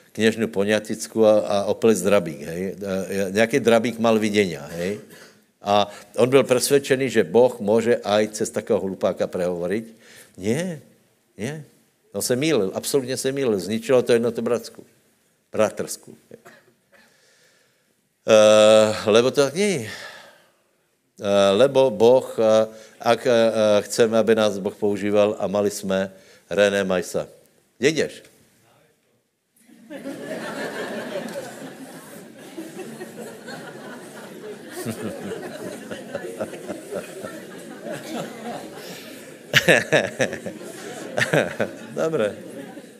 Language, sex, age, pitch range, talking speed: Slovak, male, 60-79, 105-135 Hz, 85 wpm